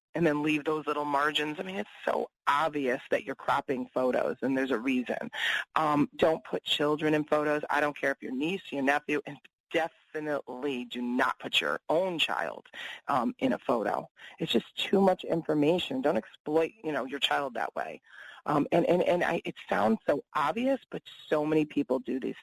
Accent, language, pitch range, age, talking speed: American, English, 135-160 Hz, 30-49, 195 wpm